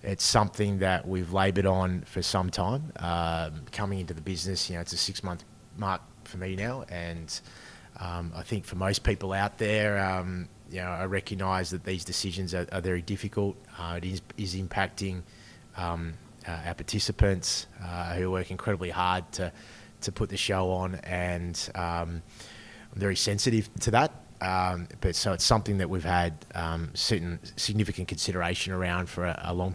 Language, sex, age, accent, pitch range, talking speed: English, male, 20-39, Australian, 90-105 Hz, 180 wpm